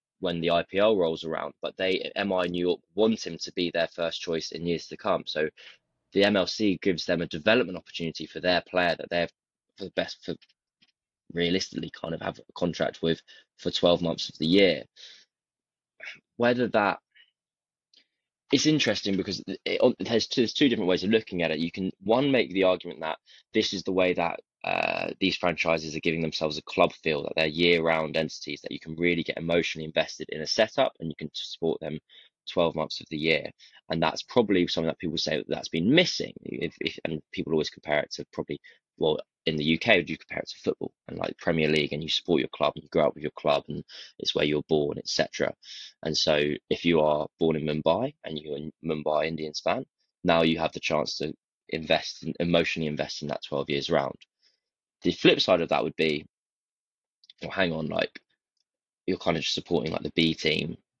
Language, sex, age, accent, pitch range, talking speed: English, male, 20-39, British, 80-90 Hz, 205 wpm